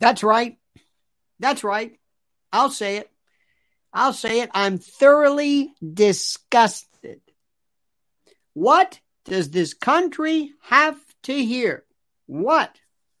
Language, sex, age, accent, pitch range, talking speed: English, male, 50-69, American, 180-255 Hz, 95 wpm